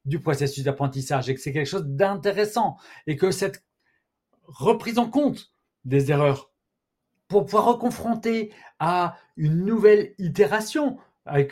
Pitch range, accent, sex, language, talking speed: 145-210 Hz, French, male, French, 130 wpm